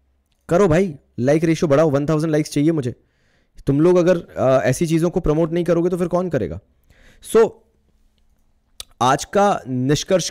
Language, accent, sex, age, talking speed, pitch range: Hindi, native, male, 20-39, 165 wpm, 130-160 Hz